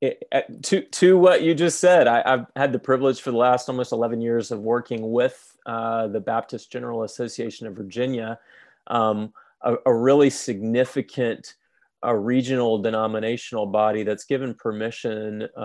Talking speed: 155 wpm